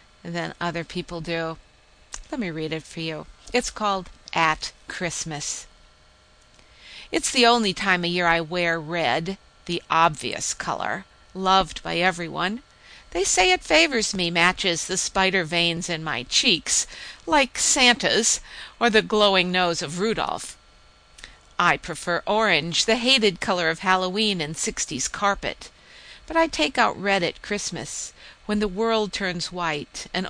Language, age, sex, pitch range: English, 50-69, female, 165-205 Hz